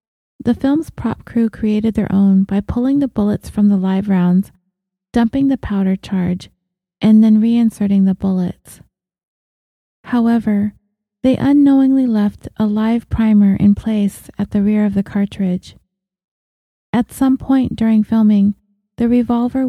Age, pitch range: 30-49, 195-230 Hz